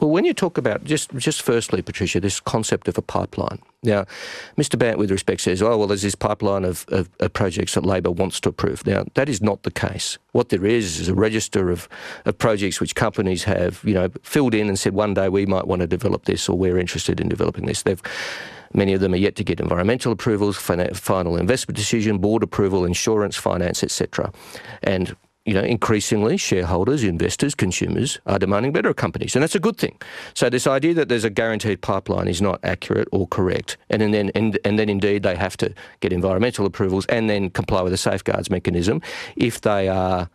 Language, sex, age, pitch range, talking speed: English, male, 40-59, 95-115 Hz, 215 wpm